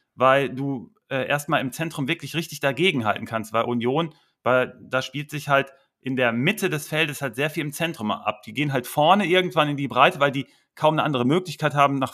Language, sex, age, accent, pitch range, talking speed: German, male, 40-59, German, 125-165 Hz, 220 wpm